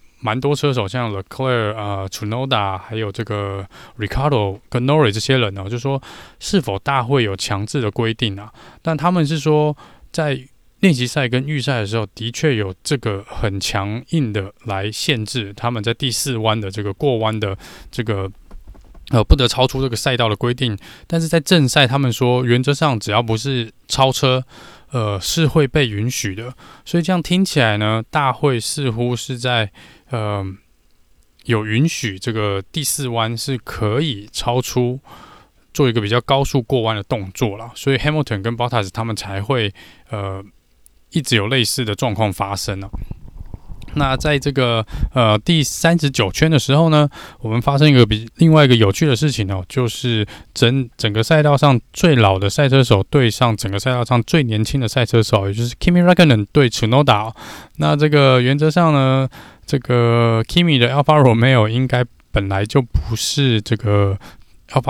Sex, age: male, 20-39